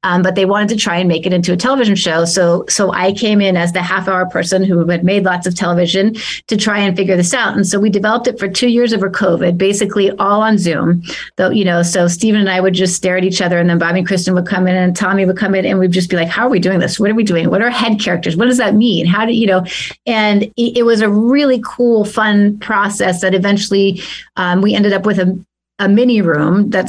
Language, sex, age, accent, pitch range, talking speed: English, female, 30-49, American, 185-215 Hz, 275 wpm